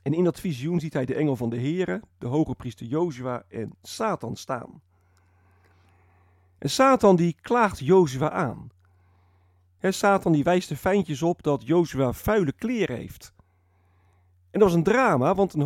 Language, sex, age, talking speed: Dutch, male, 50-69, 155 wpm